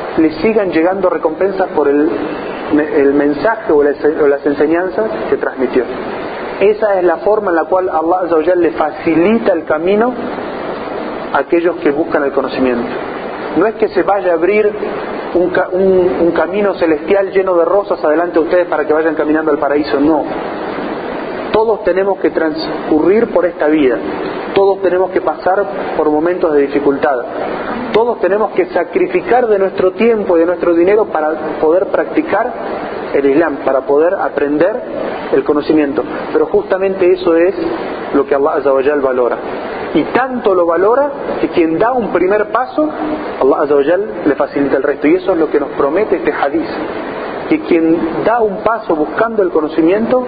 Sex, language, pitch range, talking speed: male, Spanish, 160-210 Hz, 165 wpm